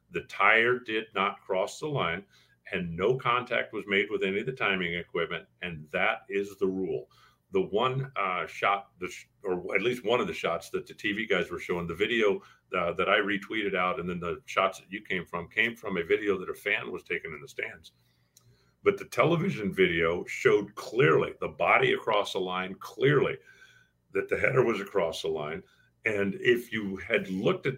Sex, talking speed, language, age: male, 205 wpm, English, 50-69